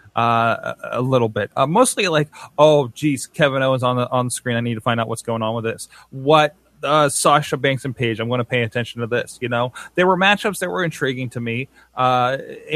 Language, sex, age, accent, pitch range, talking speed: English, male, 20-39, American, 125-155 Hz, 230 wpm